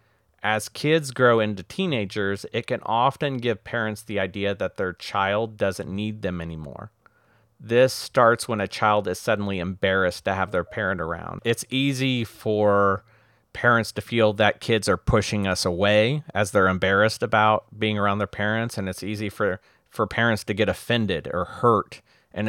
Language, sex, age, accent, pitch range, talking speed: English, male, 40-59, American, 100-115 Hz, 170 wpm